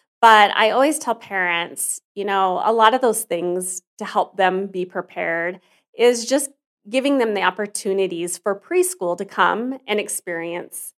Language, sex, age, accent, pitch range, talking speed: English, female, 30-49, American, 175-215 Hz, 160 wpm